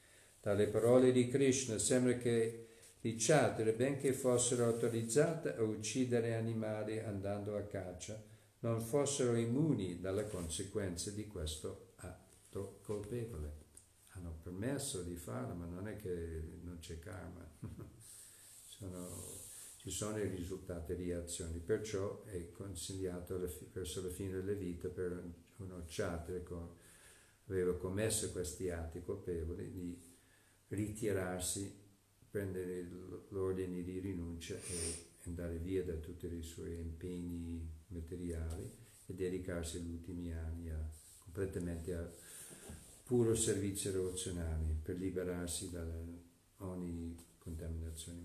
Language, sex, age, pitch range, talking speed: Italian, male, 50-69, 85-110 Hz, 115 wpm